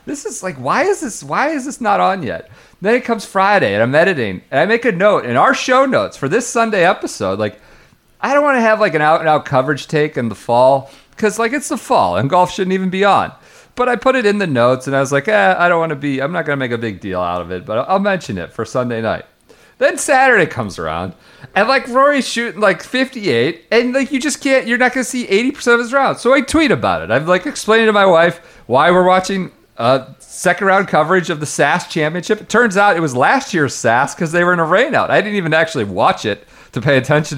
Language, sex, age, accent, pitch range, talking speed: English, male, 40-59, American, 140-230 Hz, 265 wpm